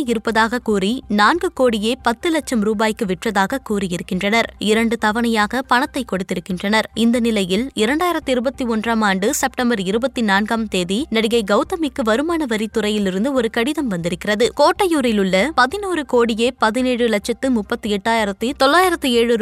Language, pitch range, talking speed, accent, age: Tamil, 210-260 Hz, 110 wpm, native, 20-39